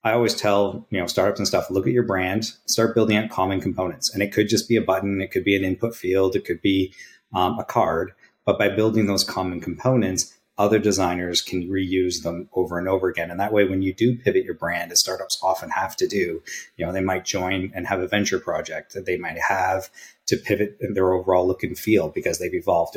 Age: 30-49